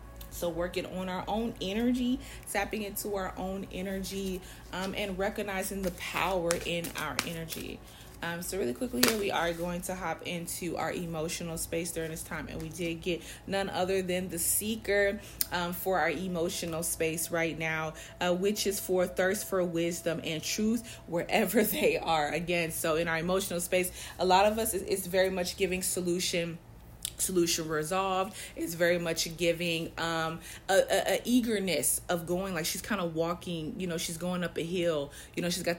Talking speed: 185 wpm